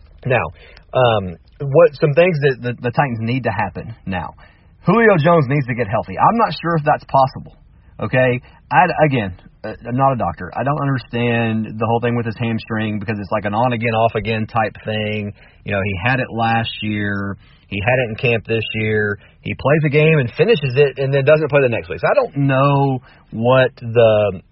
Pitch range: 110-140 Hz